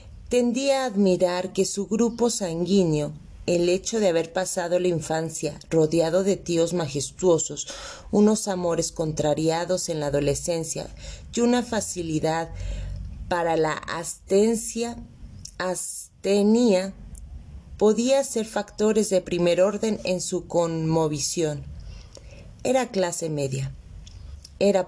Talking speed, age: 105 wpm, 40-59